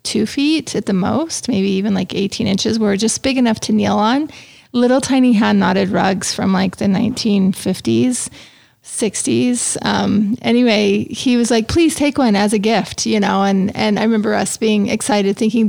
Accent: American